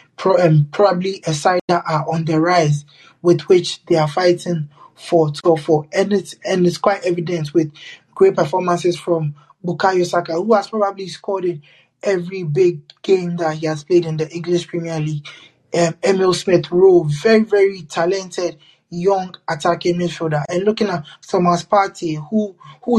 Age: 20-39